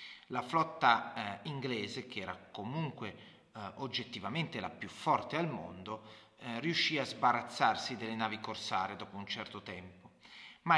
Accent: native